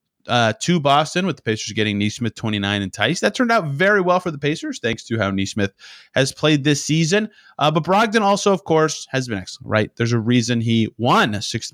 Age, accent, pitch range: 30-49, American, 115-170 Hz